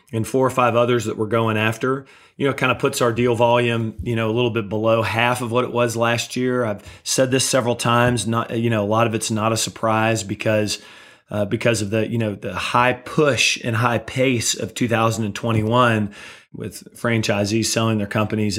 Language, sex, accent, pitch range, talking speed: English, male, American, 105-120 Hz, 210 wpm